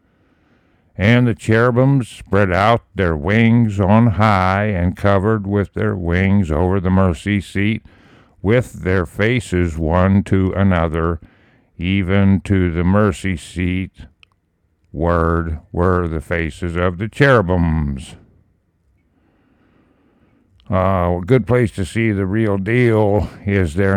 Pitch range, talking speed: 85-105 Hz, 120 wpm